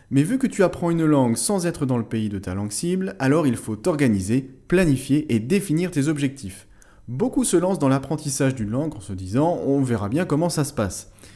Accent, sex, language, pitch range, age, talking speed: French, male, French, 105-160 Hz, 30-49, 220 wpm